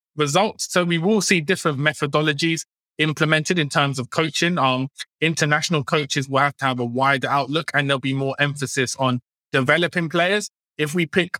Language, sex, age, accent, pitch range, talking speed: English, male, 20-39, British, 130-160 Hz, 175 wpm